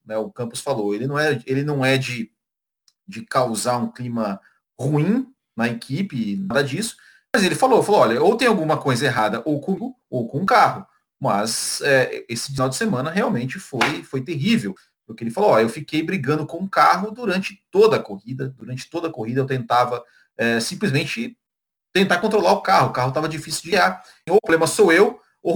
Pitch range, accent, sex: 120-185 Hz, Brazilian, male